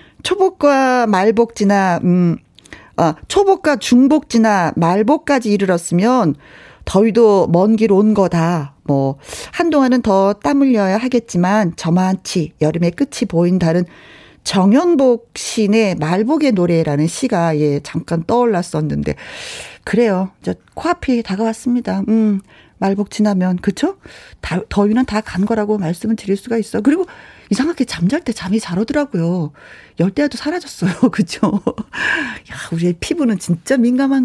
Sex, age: female, 40-59